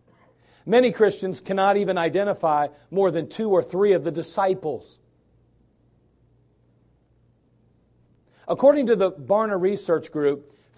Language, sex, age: English, male, 40-59